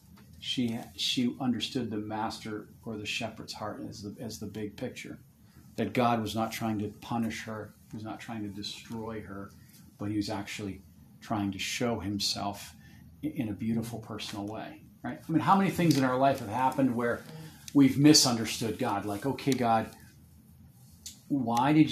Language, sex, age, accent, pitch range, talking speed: English, male, 40-59, American, 105-130 Hz, 170 wpm